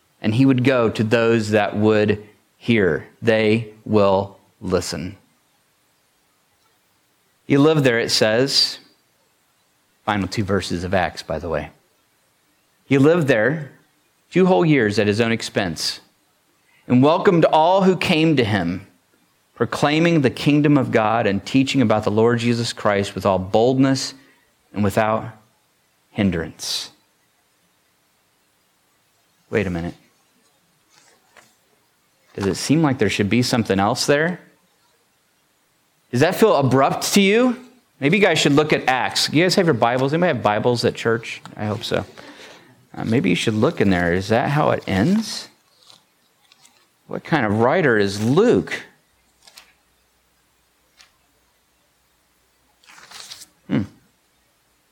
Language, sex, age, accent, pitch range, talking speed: English, male, 40-59, American, 100-140 Hz, 130 wpm